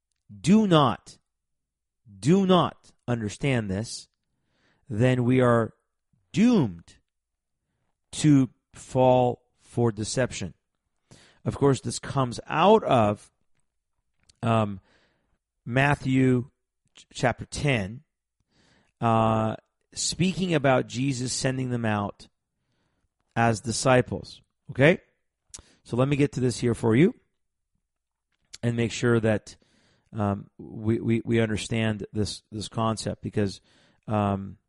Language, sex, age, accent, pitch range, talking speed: English, male, 40-59, American, 110-135 Hz, 100 wpm